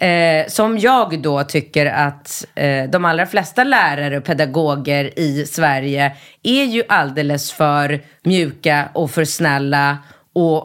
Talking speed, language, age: 135 wpm, Swedish, 30-49